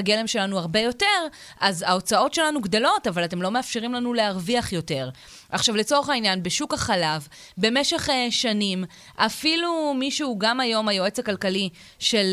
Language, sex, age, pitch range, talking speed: Hebrew, female, 20-39, 195-255 Hz, 145 wpm